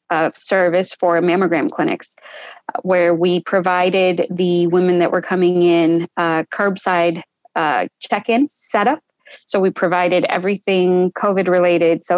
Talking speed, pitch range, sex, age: 135 wpm, 175-195 Hz, female, 20-39